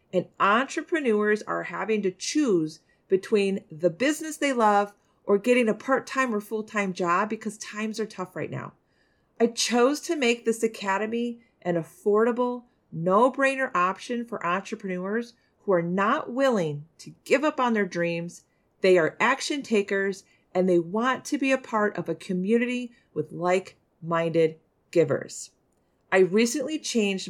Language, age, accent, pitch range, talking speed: English, 40-59, American, 175-230 Hz, 145 wpm